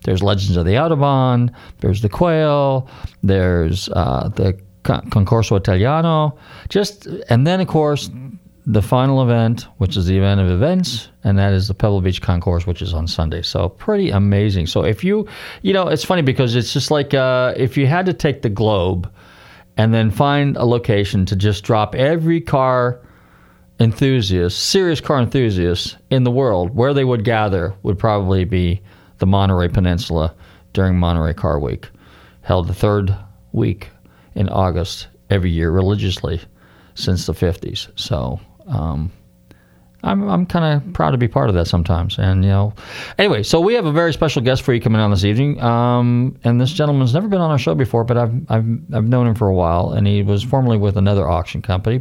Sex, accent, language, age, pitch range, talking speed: male, American, English, 40-59, 95-130 Hz, 185 wpm